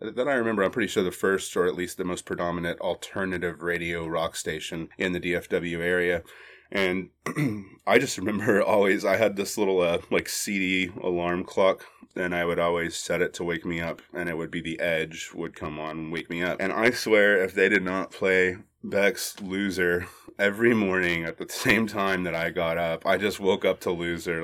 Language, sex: English, male